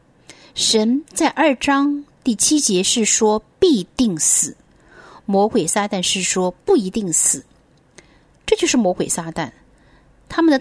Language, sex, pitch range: Chinese, female, 190-275 Hz